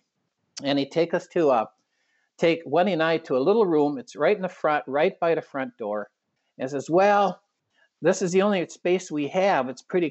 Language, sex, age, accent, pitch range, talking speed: English, male, 50-69, American, 130-175 Hz, 225 wpm